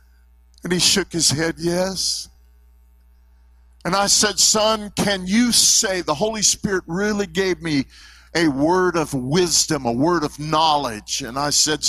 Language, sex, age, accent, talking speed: English, male, 50-69, American, 150 wpm